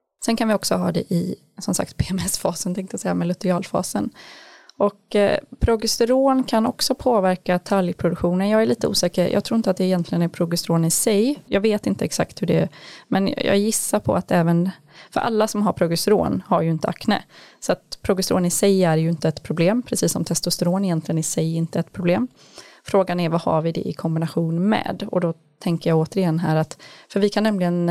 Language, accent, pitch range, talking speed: Swedish, native, 165-200 Hz, 210 wpm